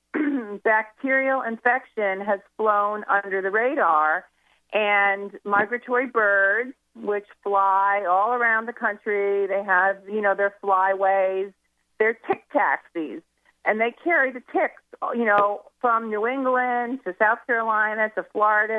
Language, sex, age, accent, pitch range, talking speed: English, female, 50-69, American, 195-225 Hz, 130 wpm